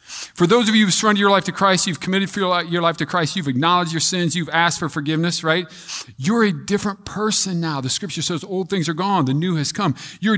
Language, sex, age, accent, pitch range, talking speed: English, male, 40-59, American, 160-220 Hz, 250 wpm